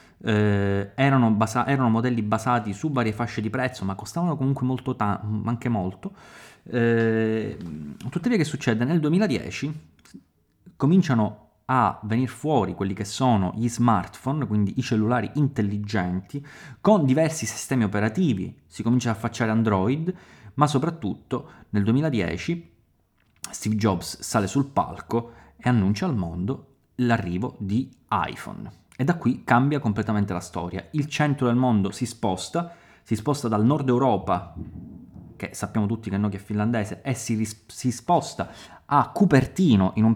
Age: 30-49